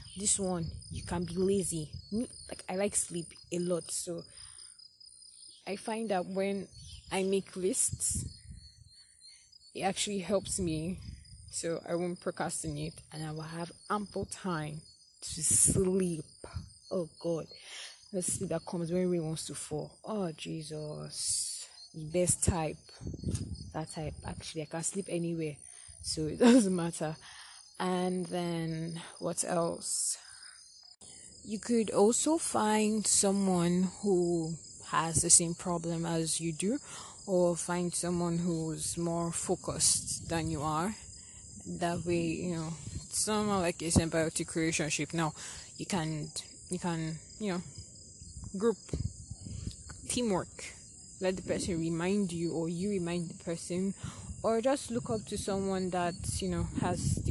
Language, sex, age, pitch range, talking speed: English, female, 20-39, 155-185 Hz, 130 wpm